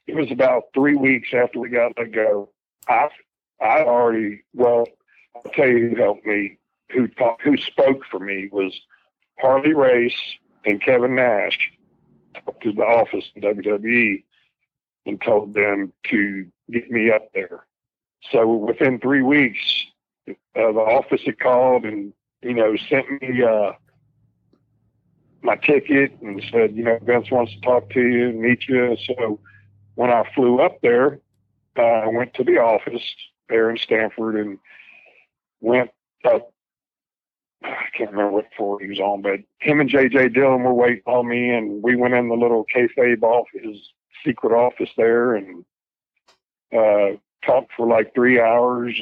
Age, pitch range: 60-79, 105-125 Hz